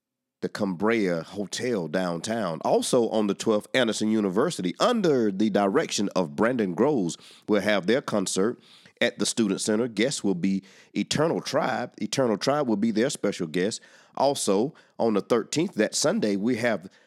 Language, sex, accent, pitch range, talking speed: English, male, American, 105-125 Hz, 155 wpm